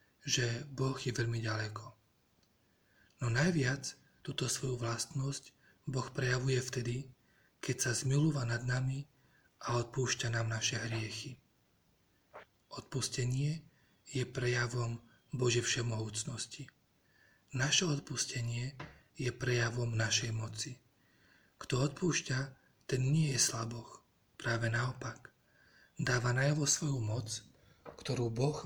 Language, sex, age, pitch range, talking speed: Slovak, male, 40-59, 115-135 Hz, 100 wpm